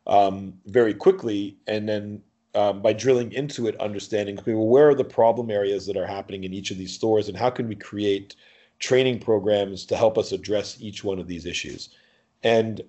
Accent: American